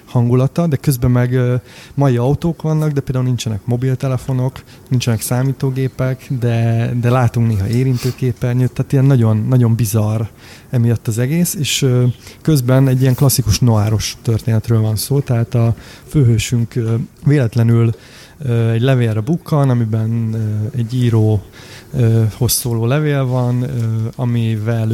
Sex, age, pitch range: male, 30-49, 115-130 Hz